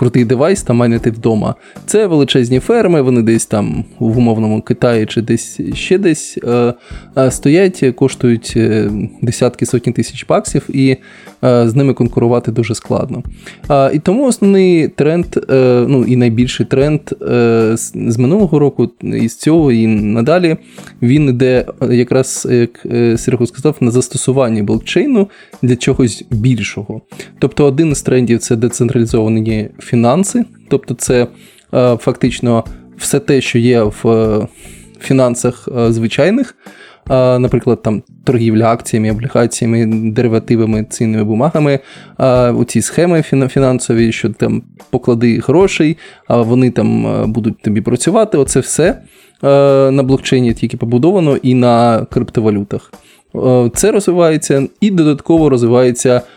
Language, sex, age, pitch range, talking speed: Ukrainian, male, 20-39, 115-140 Hz, 120 wpm